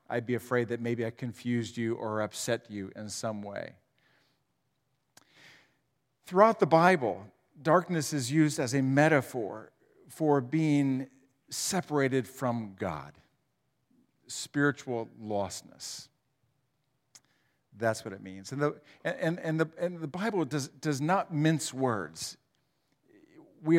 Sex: male